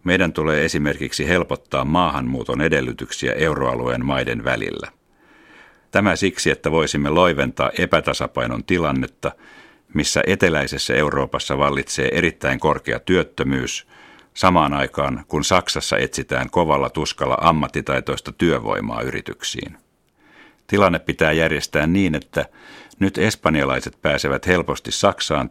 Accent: native